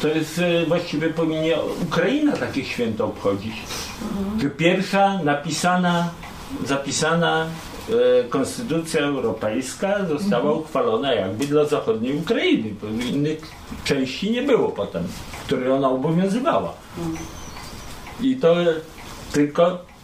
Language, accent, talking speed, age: Polish, native, 95 wpm, 50-69